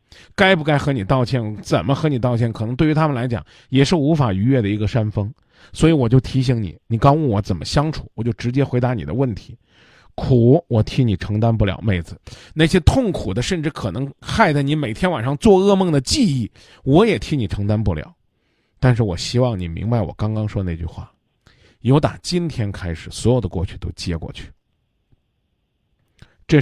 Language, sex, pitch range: Chinese, male, 100-140 Hz